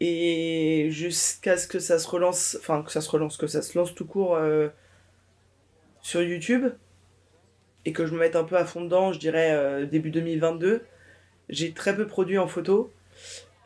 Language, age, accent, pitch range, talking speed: French, 20-39, French, 155-195 Hz, 190 wpm